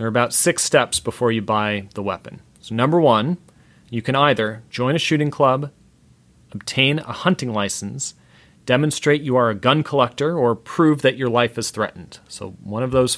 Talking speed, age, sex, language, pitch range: 185 wpm, 40-59, male, English, 115-145 Hz